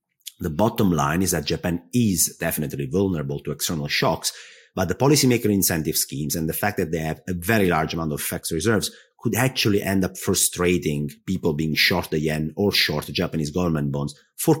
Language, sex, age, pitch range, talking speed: English, male, 30-49, 80-100 Hz, 195 wpm